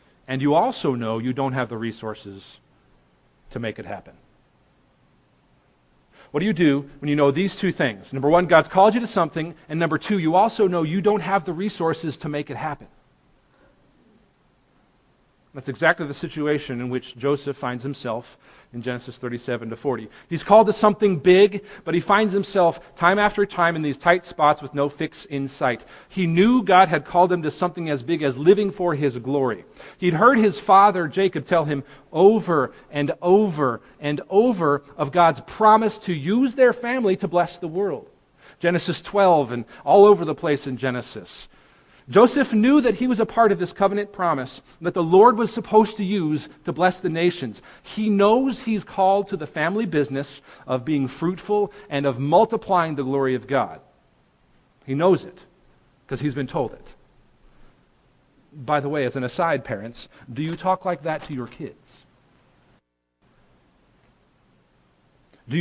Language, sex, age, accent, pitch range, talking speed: English, male, 40-59, American, 135-195 Hz, 175 wpm